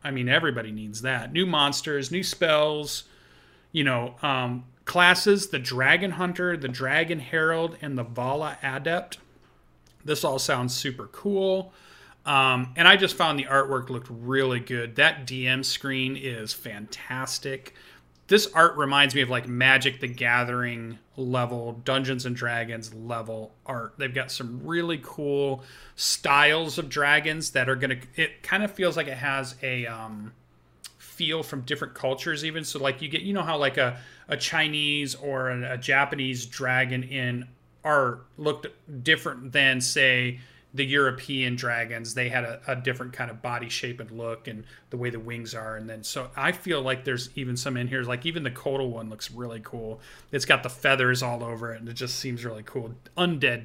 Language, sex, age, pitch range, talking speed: English, male, 30-49, 120-145 Hz, 175 wpm